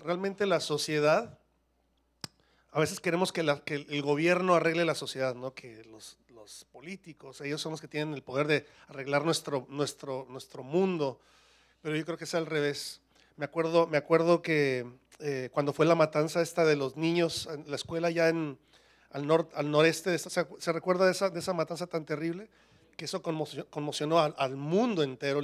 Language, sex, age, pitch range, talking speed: English, male, 40-59, 145-180 Hz, 195 wpm